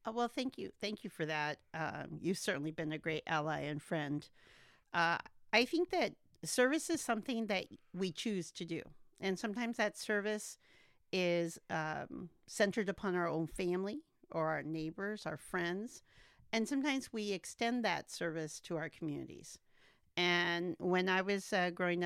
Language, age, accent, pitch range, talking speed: English, 50-69, American, 170-205 Hz, 160 wpm